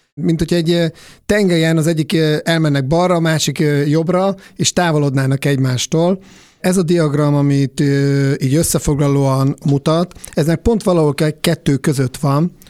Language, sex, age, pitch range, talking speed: Hungarian, male, 50-69, 140-165 Hz, 130 wpm